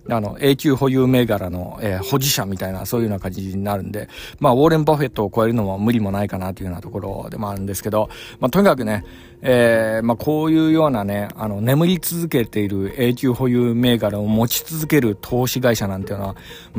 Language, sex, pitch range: Japanese, male, 100-130 Hz